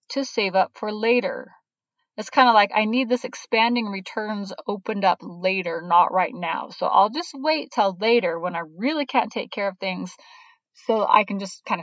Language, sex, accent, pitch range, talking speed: English, female, American, 190-265 Hz, 200 wpm